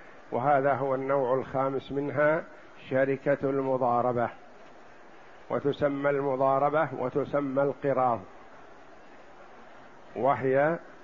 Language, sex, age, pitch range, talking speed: Arabic, male, 50-69, 140-160 Hz, 65 wpm